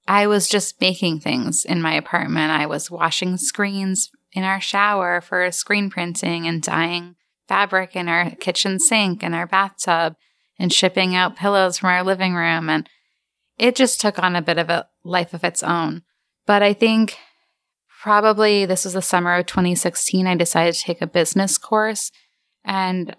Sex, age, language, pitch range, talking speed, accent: female, 10-29, English, 170-200 Hz, 175 wpm, American